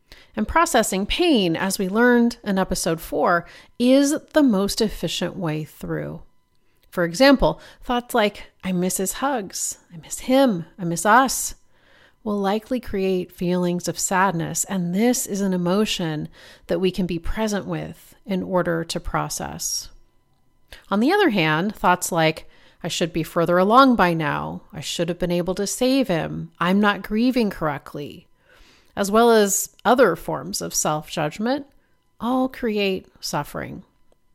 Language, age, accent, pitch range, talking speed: English, 30-49, American, 175-240 Hz, 150 wpm